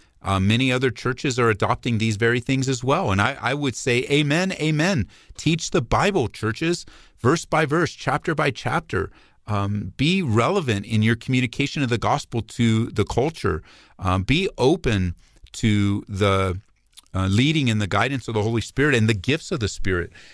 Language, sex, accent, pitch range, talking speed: English, male, American, 100-135 Hz, 175 wpm